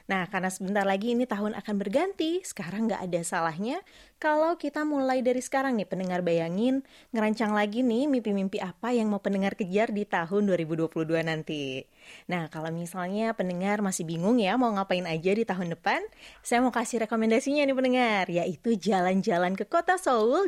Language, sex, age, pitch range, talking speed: Malay, female, 20-39, 185-250 Hz, 165 wpm